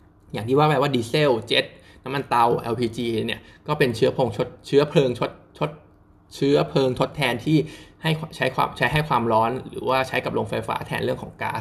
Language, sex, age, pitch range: Thai, male, 20-39, 120-145 Hz